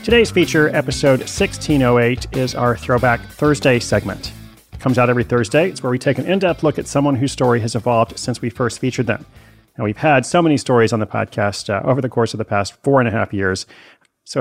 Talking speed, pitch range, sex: 225 wpm, 110-135 Hz, male